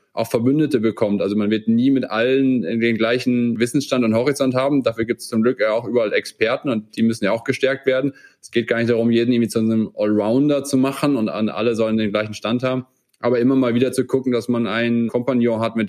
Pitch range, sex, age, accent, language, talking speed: 110-125 Hz, male, 20-39, German, German, 240 wpm